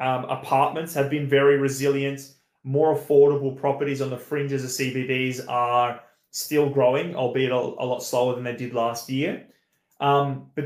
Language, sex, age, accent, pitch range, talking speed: English, male, 20-39, Australian, 130-150 Hz, 165 wpm